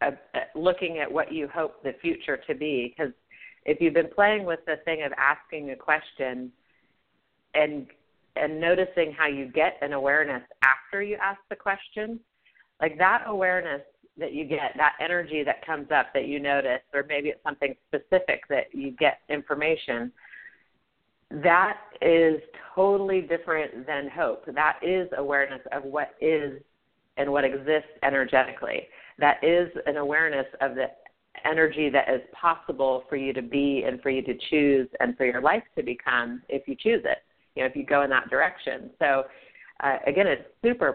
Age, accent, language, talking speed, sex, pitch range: 40-59, American, English, 170 wpm, female, 140-185 Hz